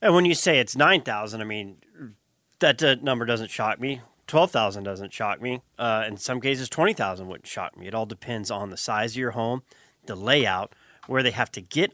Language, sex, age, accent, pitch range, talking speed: English, male, 30-49, American, 105-130 Hz, 210 wpm